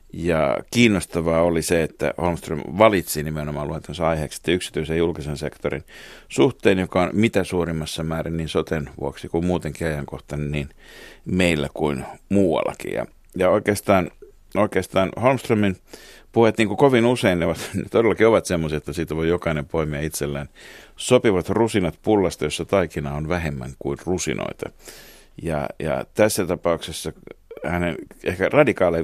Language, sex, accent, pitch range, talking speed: Finnish, male, native, 80-100 Hz, 140 wpm